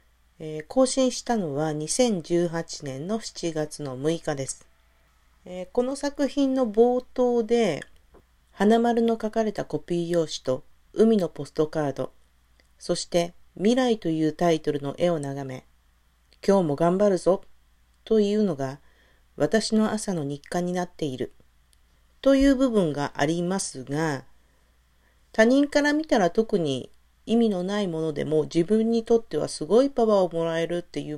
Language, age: Japanese, 40-59